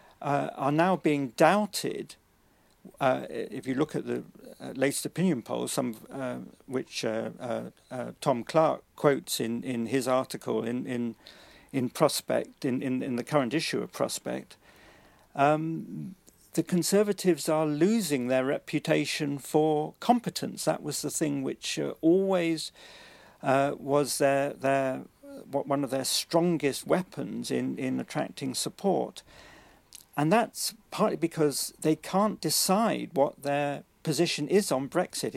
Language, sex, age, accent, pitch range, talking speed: English, male, 50-69, British, 130-170 Hz, 135 wpm